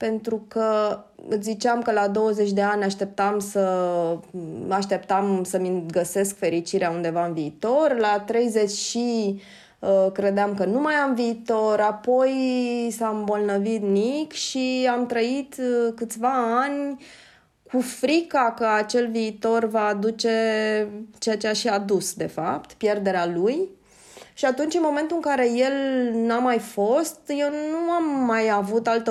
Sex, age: female, 20-39